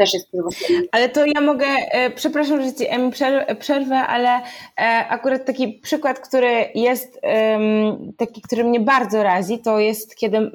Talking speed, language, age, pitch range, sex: 125 wpm, Polish, 20-39, 200-245 Hz, female